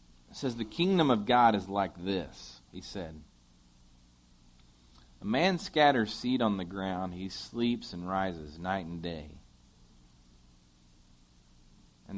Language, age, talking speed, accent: English, 40-59, 130 wpm, American